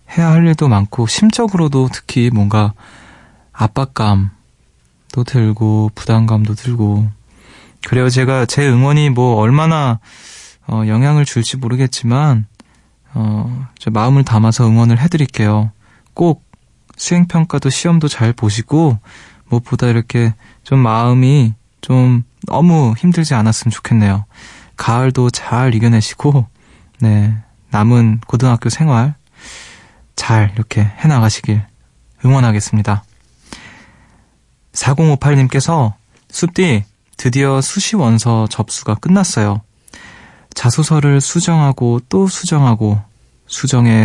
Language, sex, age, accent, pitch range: Korean, male, 20-39, native, 110-140 Hz